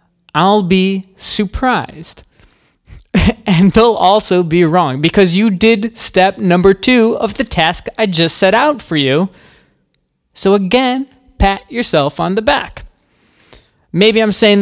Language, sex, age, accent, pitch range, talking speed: English, male, 20-39, American, 165-205 Hz, 135 wpm